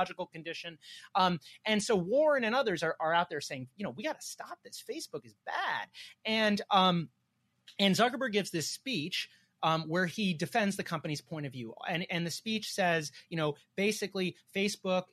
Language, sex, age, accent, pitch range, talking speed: English, male, 30-49, American, 155-195 Hz, 185 wpm